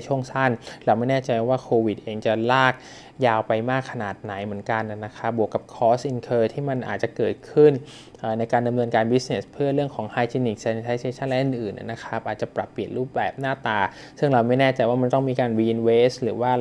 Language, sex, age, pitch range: Thai, male, 20-39, 110-130 Hz